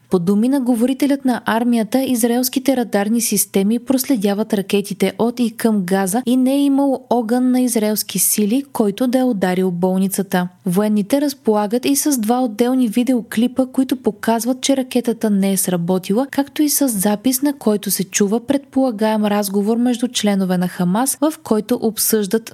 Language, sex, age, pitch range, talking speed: Bulgarian, female, 20-39, 195-250 Hz, 155 wpm